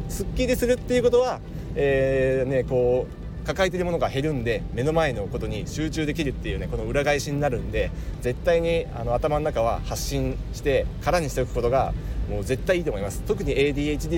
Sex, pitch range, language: male, 110-165 Hz, Japanese